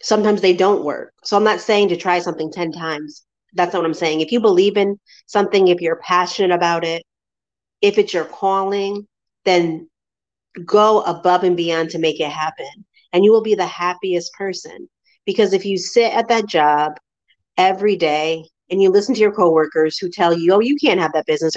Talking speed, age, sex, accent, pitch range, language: 200 wpm, 30-49, female, American, 165-200 Hz, English